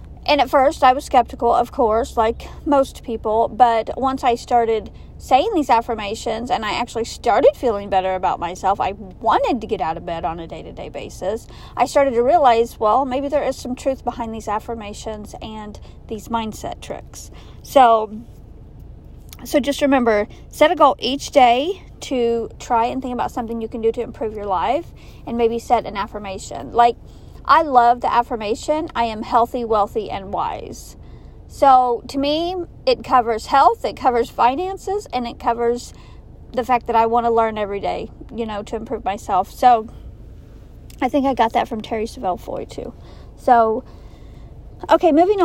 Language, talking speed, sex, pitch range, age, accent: English, 175 wpm, female, 225-265 Hz, 40-59, American